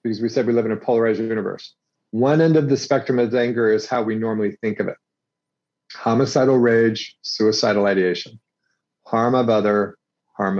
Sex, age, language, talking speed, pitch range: male, 40-59, English, 175 wpm, 105-125 Hz